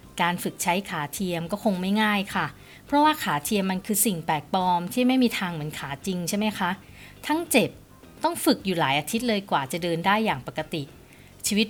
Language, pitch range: Thai, 165-215 Hz